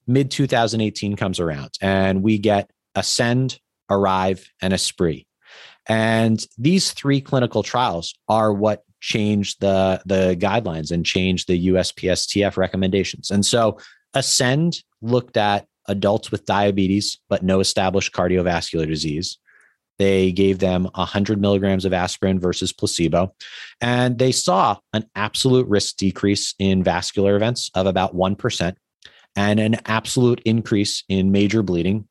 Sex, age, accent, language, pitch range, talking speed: male, 30-49, American, English, 95-110 Hz, 125 wpm